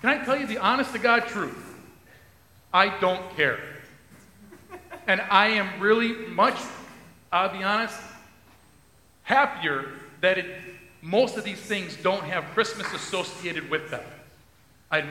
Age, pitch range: 40-59, 190-240 Hz